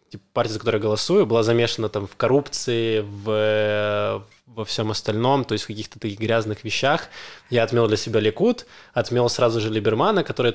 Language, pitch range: Russian, 105-115 Hz